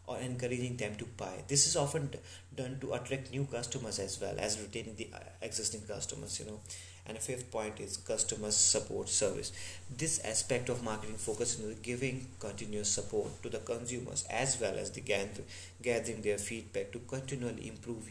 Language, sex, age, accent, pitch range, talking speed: English, male, 30-49, Indian, 95-120 Hz, 170 wpm